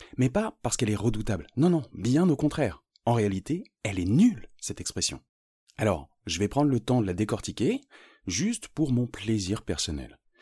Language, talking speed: French, 185 wpm